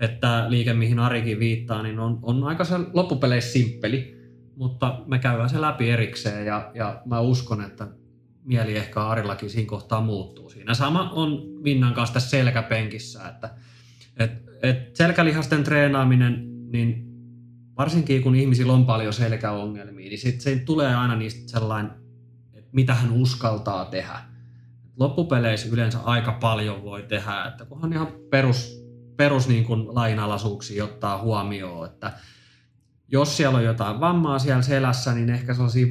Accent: native